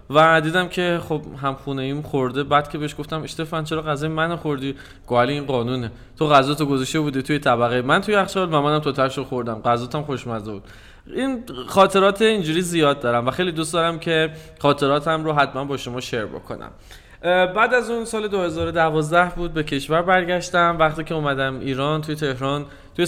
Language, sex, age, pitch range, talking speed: Persian, male, 20-39, 130-160 Hz, 180 wpm